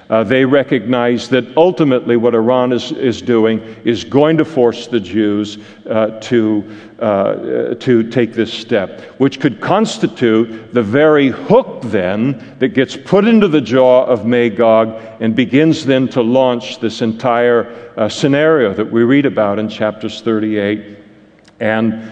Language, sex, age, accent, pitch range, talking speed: English, male, 50-69, American, 115-130 Hz, 150 wpm